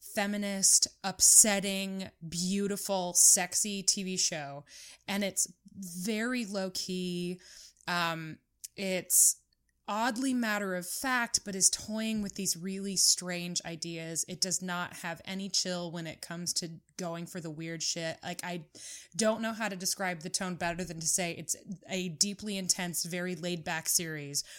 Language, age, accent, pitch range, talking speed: English, 20-39, American, 175-200 Hz, 145 wpm